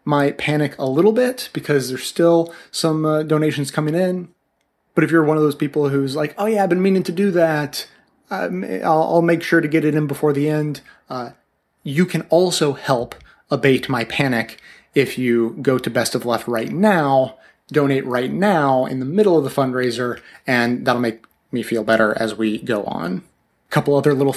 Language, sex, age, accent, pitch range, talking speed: English, male, 30-49, American, 125-160 Hz, 200 wpm